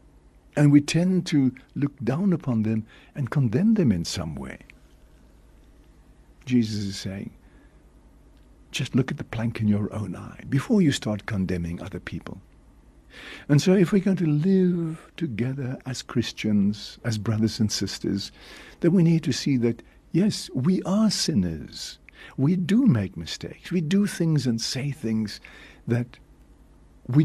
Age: 60-79